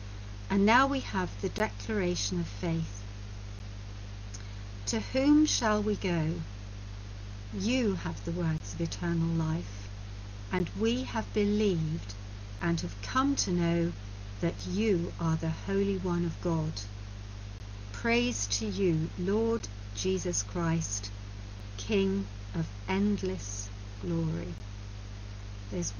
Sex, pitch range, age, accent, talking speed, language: female, 100-165 Hz, 60-79, British, 110 wpm, English